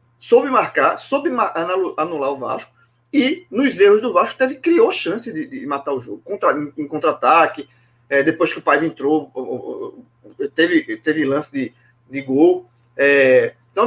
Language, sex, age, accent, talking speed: Portuguese, male, 20-39, Brazilian, 160 wpm